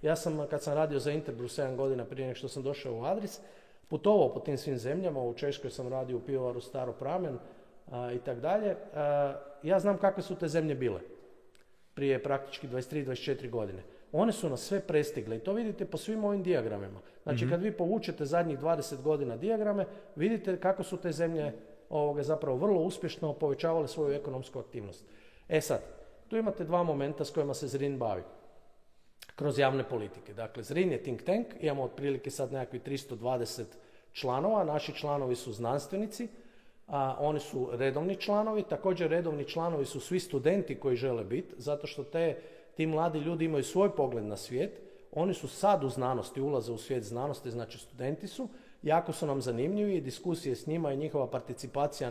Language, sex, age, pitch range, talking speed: Croatian, male, 40-59, 130-180 Hz, 175 wpm